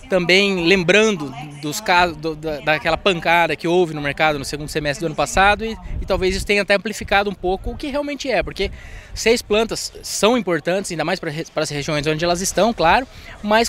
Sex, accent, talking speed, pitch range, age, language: male, Brazilian, 185 wpm, 165-220 Hz, 20-39, Portuguese